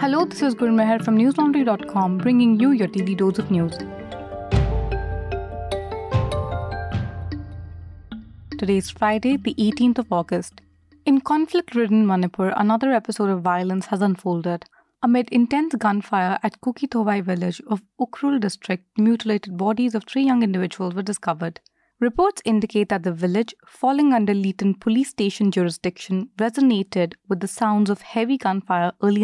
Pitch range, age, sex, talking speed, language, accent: 185-235 Hz, 30-49, female, 135 wpm, English, Indian